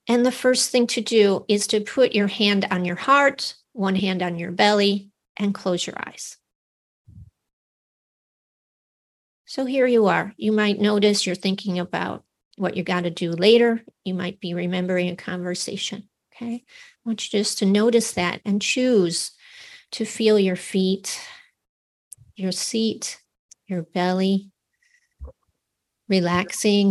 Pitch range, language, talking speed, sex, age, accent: 190-235 Hz, English, 145 wpm, female, 40-59, American